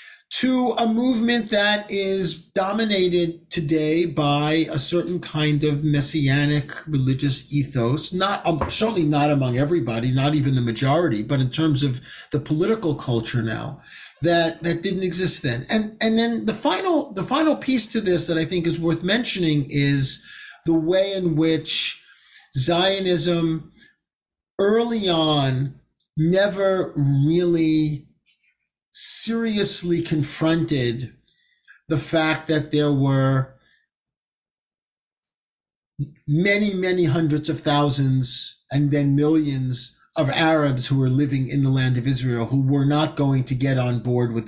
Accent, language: American, English